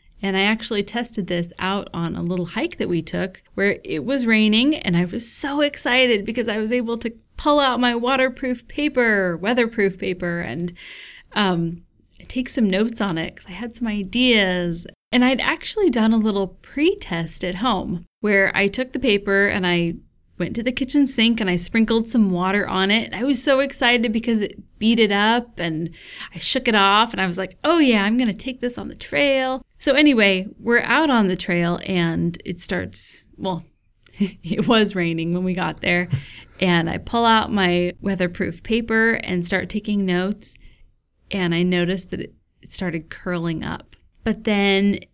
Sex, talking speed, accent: female, 185 wpm, American